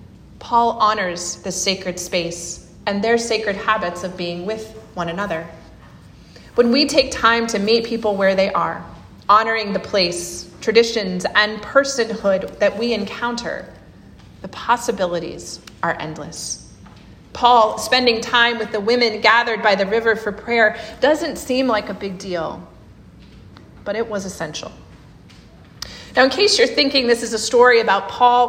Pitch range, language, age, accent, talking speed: 190-235 Hz, English, 30-49, American, 145 wpm